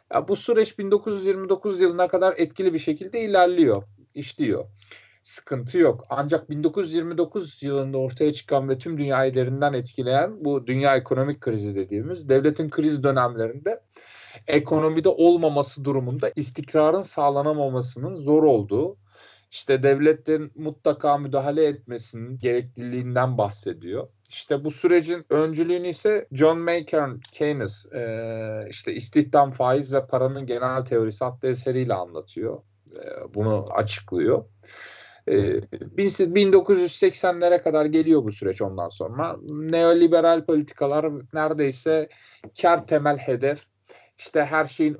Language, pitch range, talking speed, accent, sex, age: Turkish, 125-170 Hz, 115 wpm, native, male, 40-59